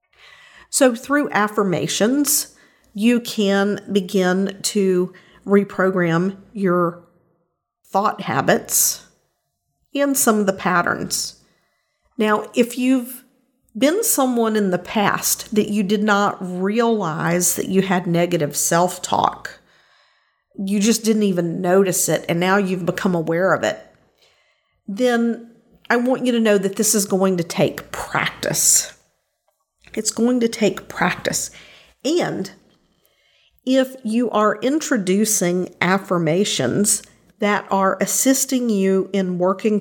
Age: 50-69